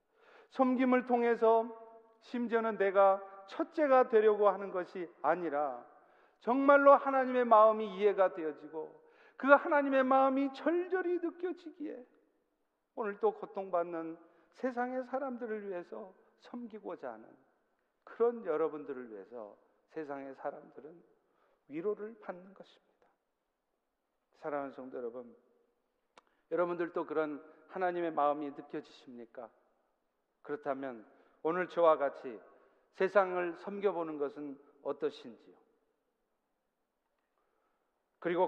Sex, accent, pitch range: male, native, 160-245 Hz